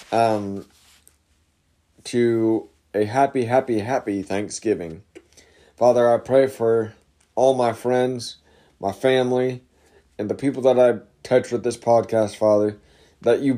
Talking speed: 125 wpm